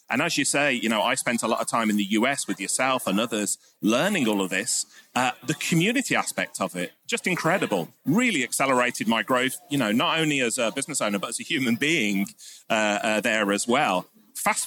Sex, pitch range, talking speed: male, 115-165 Hz, 220 wpm